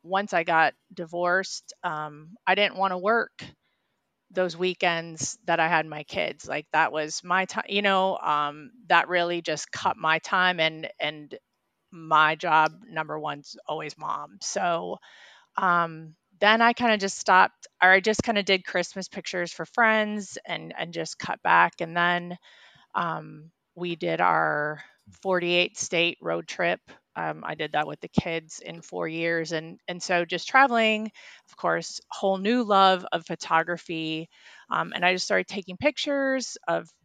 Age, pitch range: 30-49, 160-195 Hz